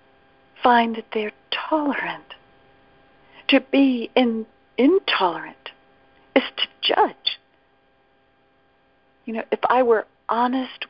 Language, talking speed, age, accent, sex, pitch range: English, 95 wpm, 60-79, American, female, 185-275 Hz